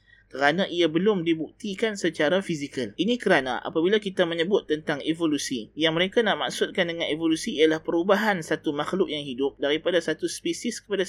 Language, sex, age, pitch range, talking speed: Malay, male, 20-39, 140-185 Hz, 155 wpm